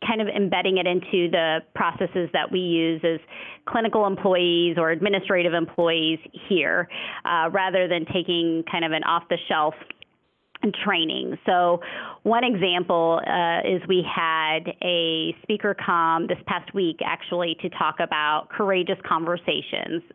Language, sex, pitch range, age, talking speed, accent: English, female, 165-195 Hz, 30-49, 135 wpm, American